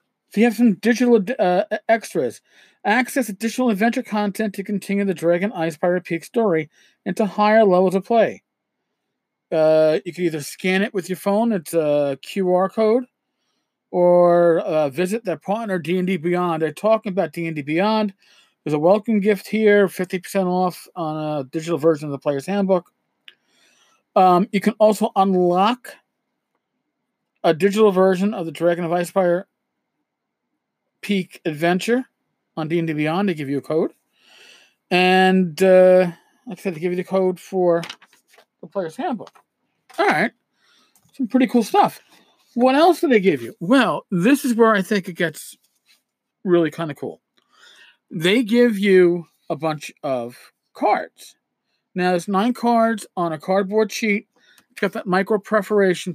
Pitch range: 175-215 Hz